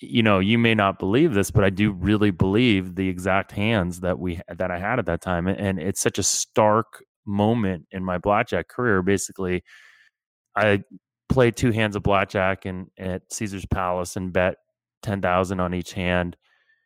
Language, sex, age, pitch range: English, male, 30-49, 90-105 Hz